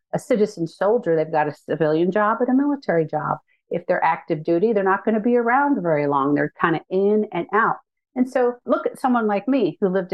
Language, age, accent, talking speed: English, 50-69, American, 230 wpm